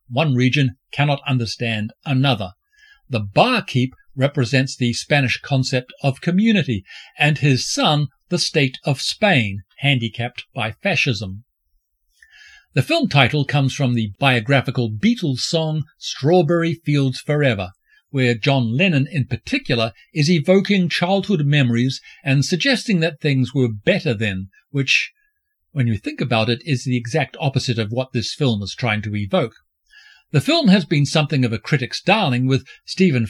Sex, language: male, English